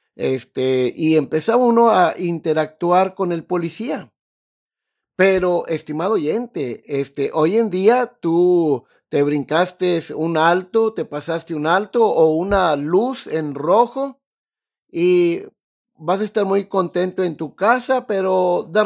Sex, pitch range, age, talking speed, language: male, 160-230 Hz, 50-69, 130 wpm, Spanish